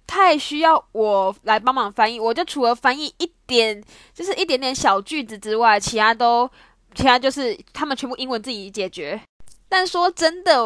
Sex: female